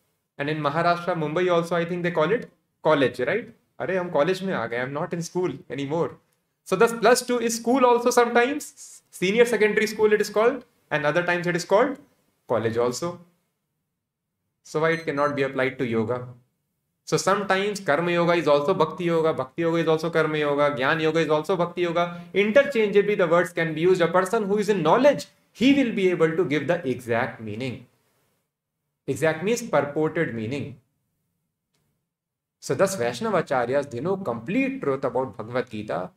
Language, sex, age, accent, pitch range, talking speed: English, male, 30-49, Indian, 130-180 Hz, 170 wpm